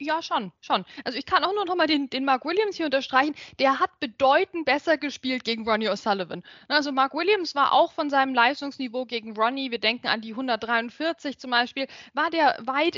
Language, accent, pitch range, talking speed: German, German, 255-330 Hz, 200 wpm